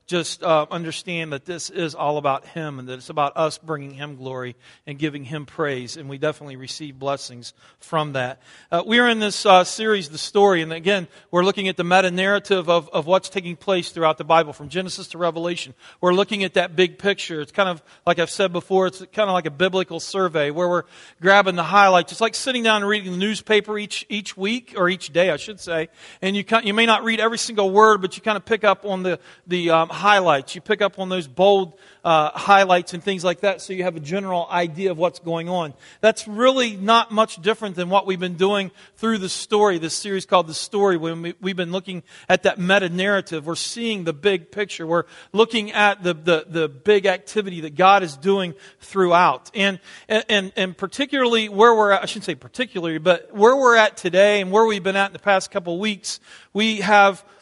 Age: 40-59